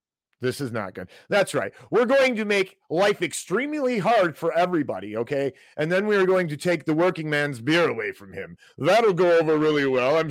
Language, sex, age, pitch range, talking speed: English, male, 40-59, 110-145 Hz, 210 wpm